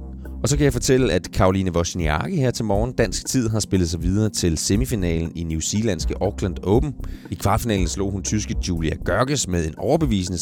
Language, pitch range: Danish, 85-110 Hz